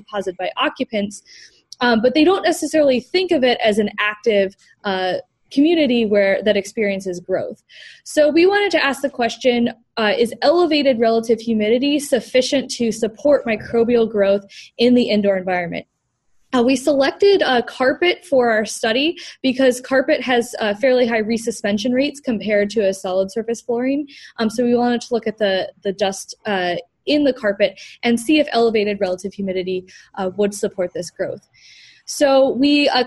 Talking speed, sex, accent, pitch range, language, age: 160 wpm, female, American, 215-275 Hz, English, 10-29